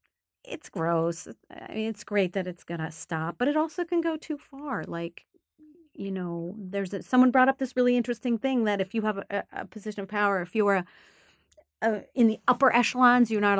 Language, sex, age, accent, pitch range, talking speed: English, female, 40-59, American, 175-240 Hz, 200 wpm